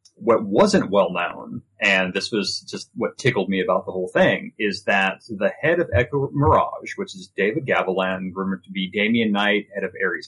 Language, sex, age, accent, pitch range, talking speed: English, male, 30-49, American, 95-115 Hz, 200 wpm